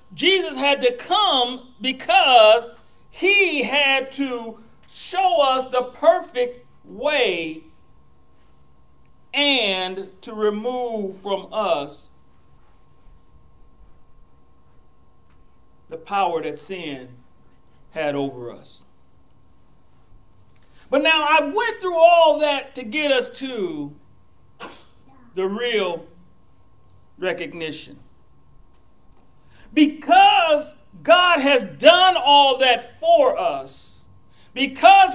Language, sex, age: English, male, 40-59